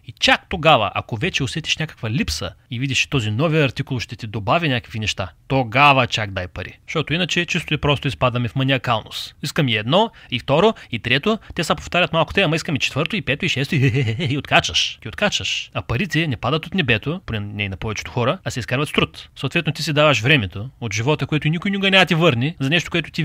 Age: 30-49